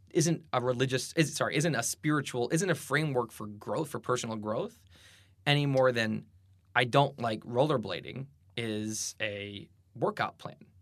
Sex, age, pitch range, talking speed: male, 20-39, 105-130 Hz, 150 wpm